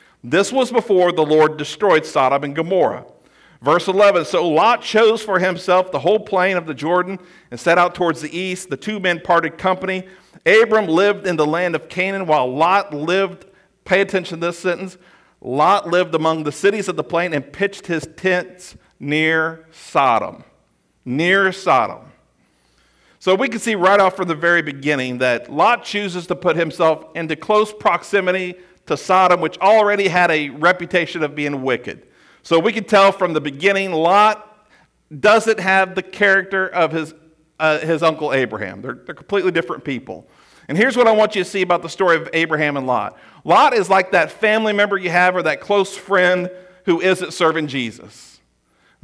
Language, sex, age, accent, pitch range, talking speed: English, male, 50-69, American, 160-195 Hz, 180 wpm